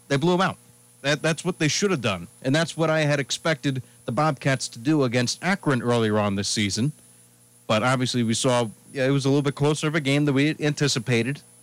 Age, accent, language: 40-59, American, English